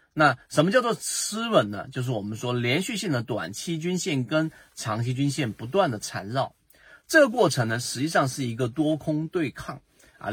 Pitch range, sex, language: 115-155 Hz, male, Chinese